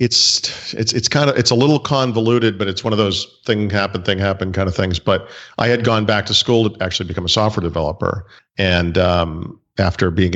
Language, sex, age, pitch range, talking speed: English, male, 50-69, 85-110 Hz, 220 wpm